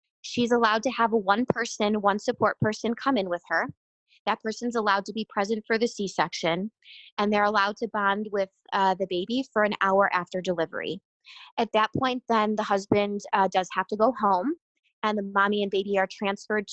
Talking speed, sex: 195 wpm, female